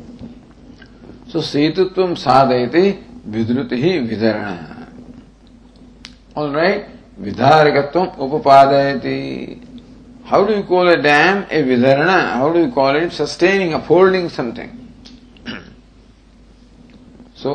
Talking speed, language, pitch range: 85 wpm, English, 115-165 Hz